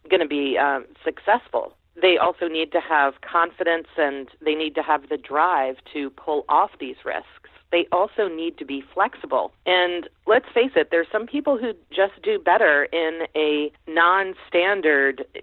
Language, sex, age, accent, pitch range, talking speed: English, female, 40-59, American, 155-190 Hz, 165 wpm